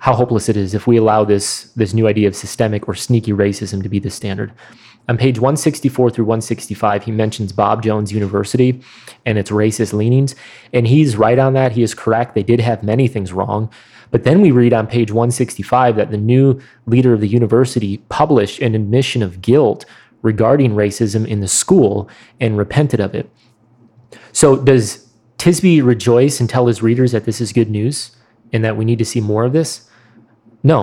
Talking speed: 195 wpm